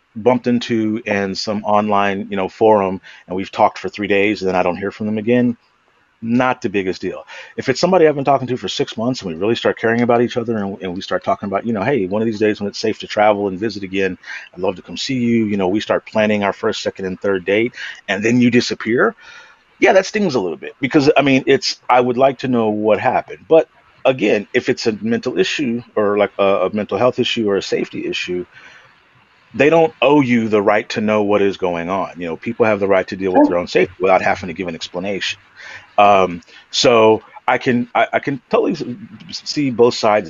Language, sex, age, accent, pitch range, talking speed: English, male, 40-59, American, 100-120 Hz, 240 wpm